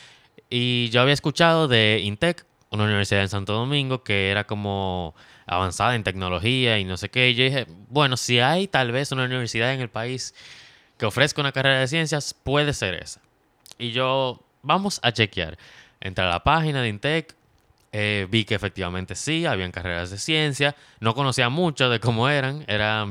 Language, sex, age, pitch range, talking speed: Spanish, male, 20-39, 105-135 Hz, 180 wpm